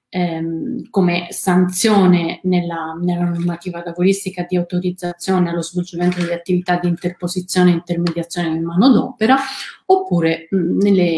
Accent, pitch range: native, 175-205 Hz